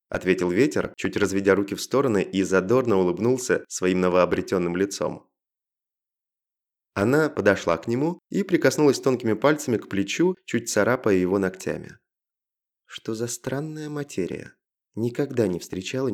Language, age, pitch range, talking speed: Russian, 20-39, 100-140 Hz, 125 wpm